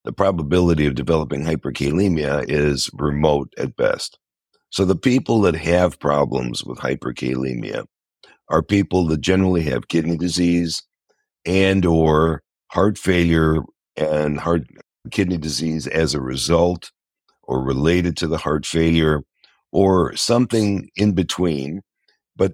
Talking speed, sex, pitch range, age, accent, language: 120 wpm, male, 75-95 Hz, 60-79, American, English